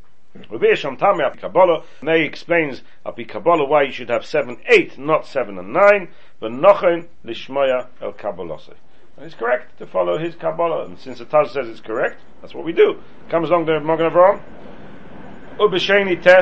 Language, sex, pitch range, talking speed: English, male, 130-175 Hz, 130 wpm